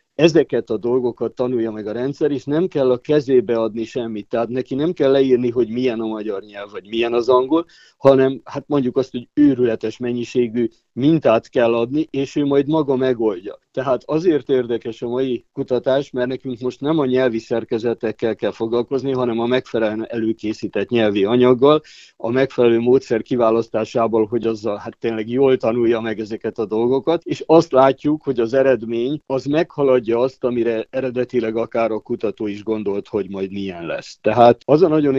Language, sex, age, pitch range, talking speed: Hungarian, male, 50-69, 115-135 Hz, 175 wpm